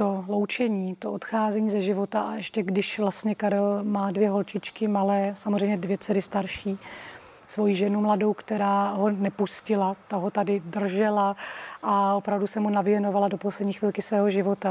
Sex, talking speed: female, 160 wpm